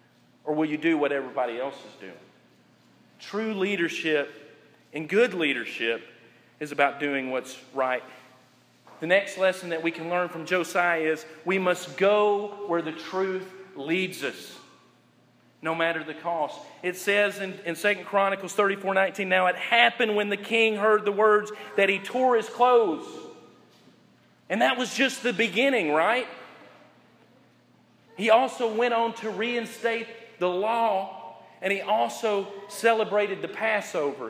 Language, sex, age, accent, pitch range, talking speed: English, male, 40-59, American, 155-225 Hz, 150 wpm